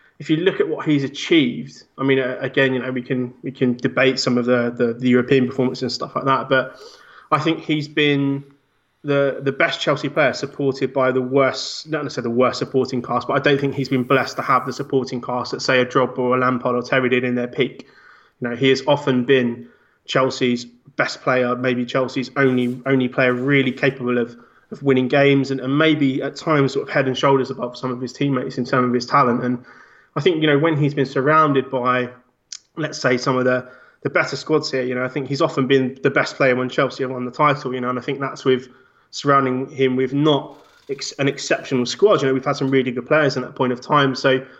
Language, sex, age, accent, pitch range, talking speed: English, male, 20-39, British, 125-140 Hz, 240 wpm